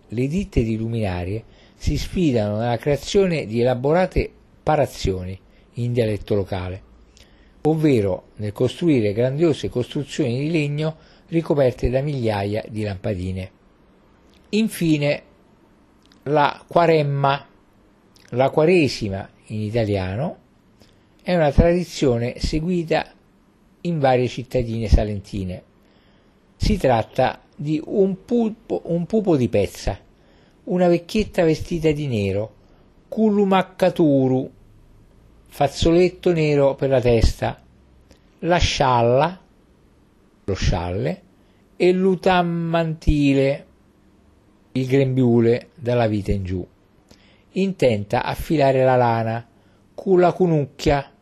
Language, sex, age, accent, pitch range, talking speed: Italian, male, 50-69, native, 105-155 Hz, 95 wpm